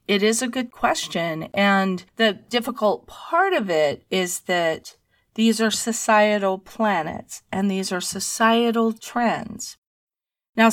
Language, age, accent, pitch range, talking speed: English, 40-59, American, 185-225 Hz, 130 wpm